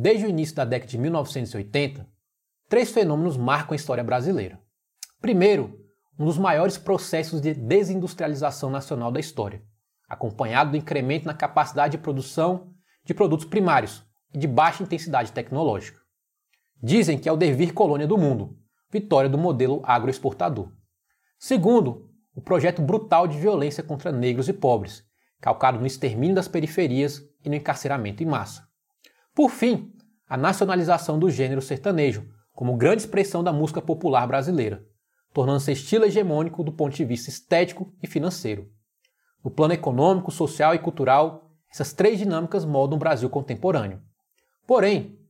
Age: 20-39